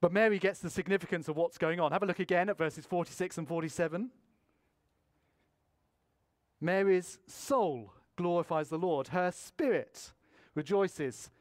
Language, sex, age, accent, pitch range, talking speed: English, male, 40-59, British, 160-210 Hz, 135 wpm